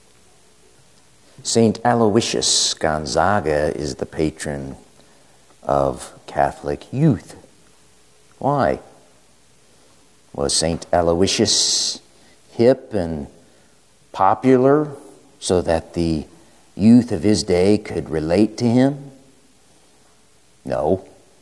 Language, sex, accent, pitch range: English, male, American, 80-115 Hz